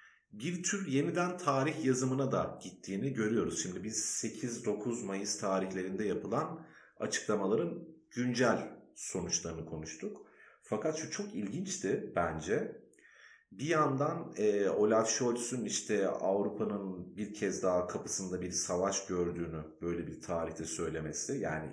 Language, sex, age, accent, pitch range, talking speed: Turkish, male, 40-59, native, 90-140 Hz, 115 wpm